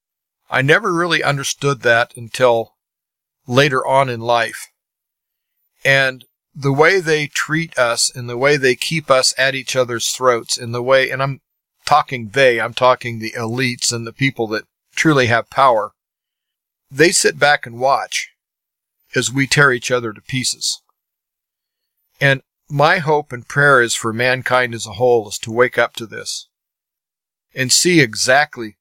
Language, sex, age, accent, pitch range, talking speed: English, male, 40-59, American, 120-140 Hz, 160 wpm